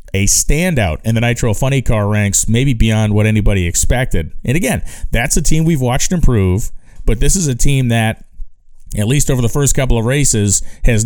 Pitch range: 100-120 Hz